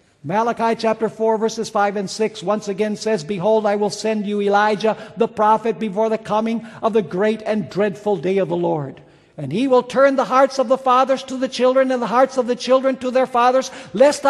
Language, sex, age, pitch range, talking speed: English, male, 60-79, 210-290 Hz, 220 wpm